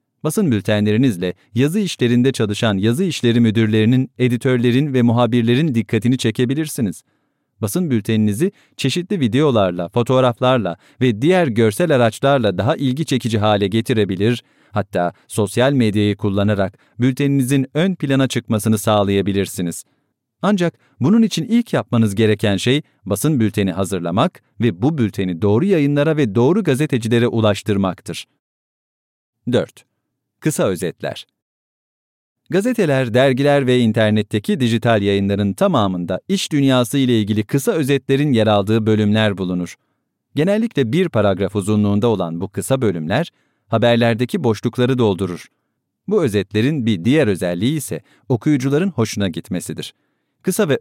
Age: 40-59